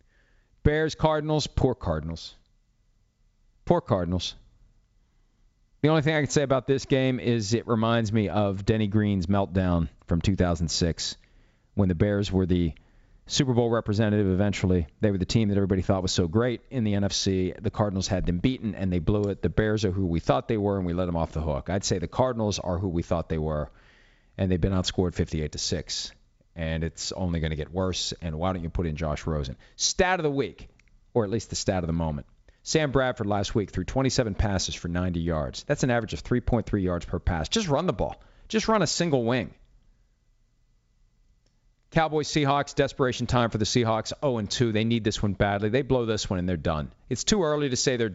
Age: 40-59